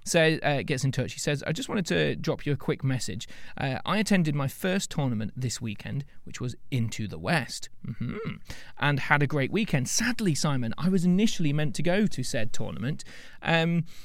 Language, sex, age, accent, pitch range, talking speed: English, male, 30-49, British, 115-150 Hz, 205 wpm